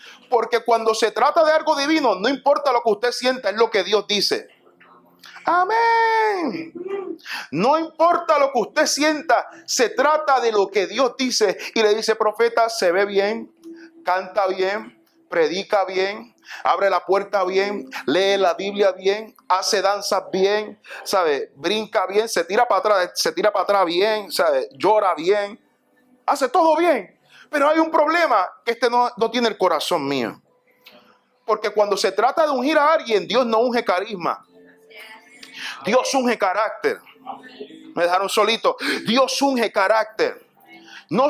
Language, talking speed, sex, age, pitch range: Spanish, 155 wpm, male, 30-49, 205-290 Hz